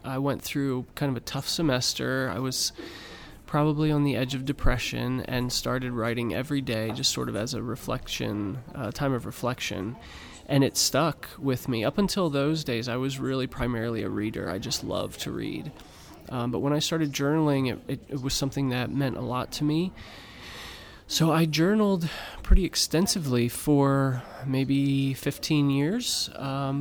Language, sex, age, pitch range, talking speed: English, male, 20-39, 120-145 Hz, 175 wpm